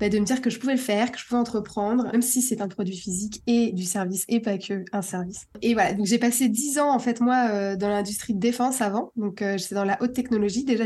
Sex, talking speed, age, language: female, 275 wpm, 20-39, French